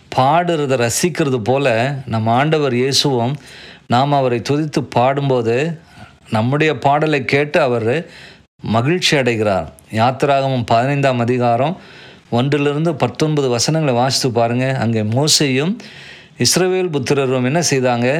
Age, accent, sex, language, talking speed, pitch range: 50-69, native, male, Tamil, 110 wpm, 120-160 Hz